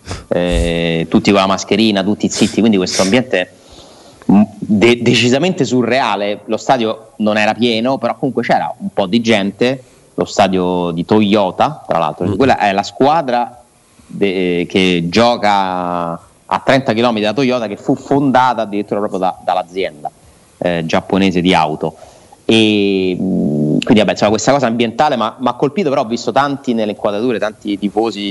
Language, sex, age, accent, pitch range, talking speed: Italian, male, 30-49, native, 95-120 Hz, 140 wpm